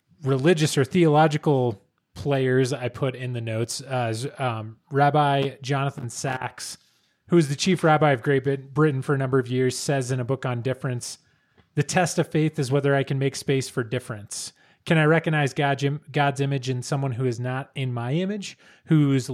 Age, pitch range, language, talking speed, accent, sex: 20-39, 125-150 Hz, English, 185 wpm, American, male